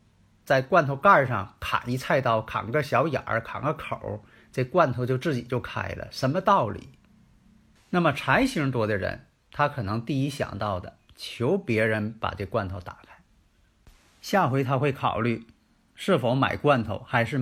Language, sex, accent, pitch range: Chinese, male, native, 110-140 Hz